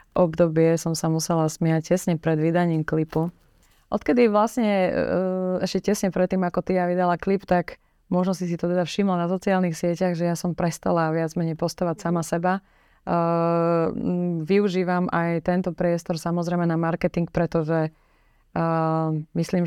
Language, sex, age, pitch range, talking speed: Slovak, female, 20-39, 165-185 Hz, 145 wpm